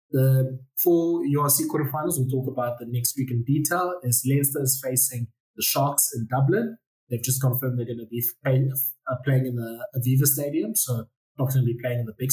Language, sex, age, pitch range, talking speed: English, male, 20-39, 120-135 Hz, 215 wpm